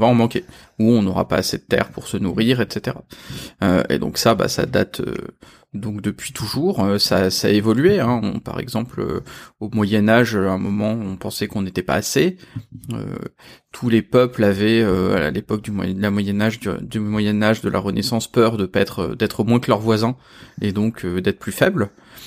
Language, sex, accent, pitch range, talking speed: French, male, French, 105-125 Hz, 215 wpm